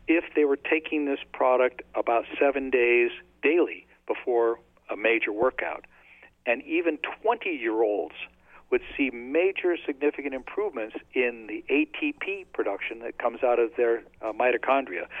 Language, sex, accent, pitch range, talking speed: English, male, American, 115-175 Hz, 130 wpm